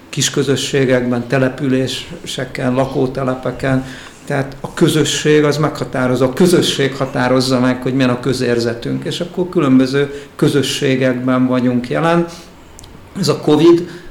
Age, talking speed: 50-69, 105 wpm